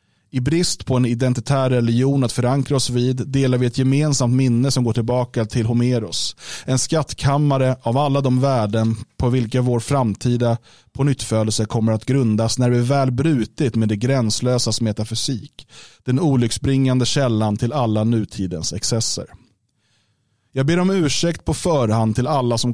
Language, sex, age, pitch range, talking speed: Swedish, male, 30-49, 110-135 Hz, 155 wpm